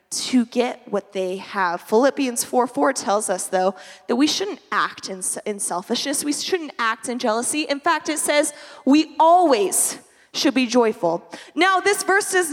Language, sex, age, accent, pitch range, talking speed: English, female, 20-39, American, 255-340 Hz, 170 wpm